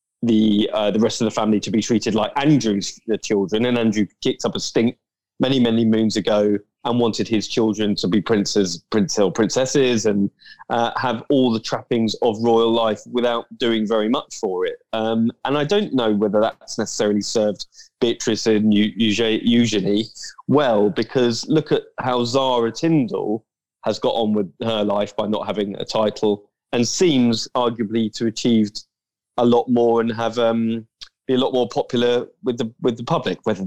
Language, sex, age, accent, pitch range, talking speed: English, male, 20-39, British, 110-130 Hz, 180 wpm